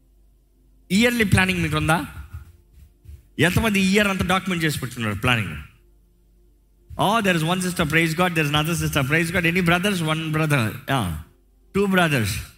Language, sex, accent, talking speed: Telugu, male, native, 155 wpm